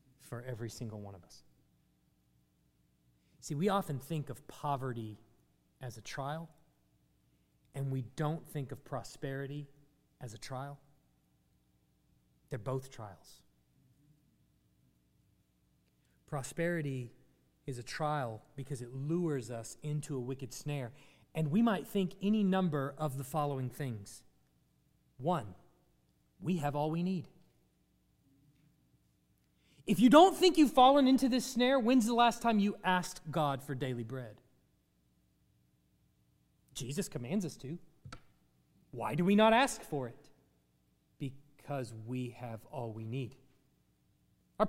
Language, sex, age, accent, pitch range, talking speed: English, male, 30-49, American, 115-185 Hz, 125 wpm